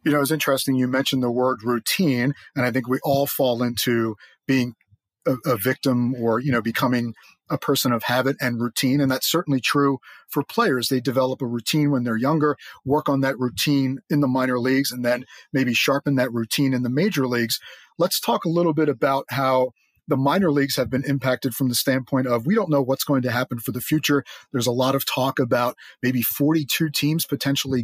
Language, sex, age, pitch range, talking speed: English, male, 30-49, 130-150 Hz, 210 wpm